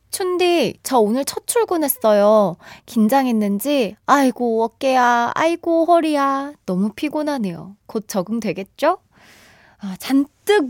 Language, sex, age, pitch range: Korean, female, 20-39, 190-285 Hz